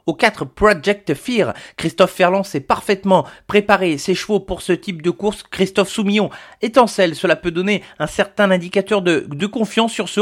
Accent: French